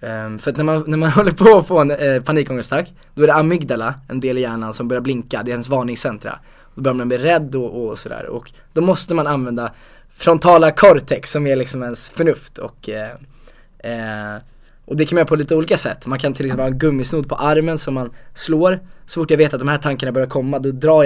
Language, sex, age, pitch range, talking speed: English, male, 20-39, 130-155 Hz, 240 wpm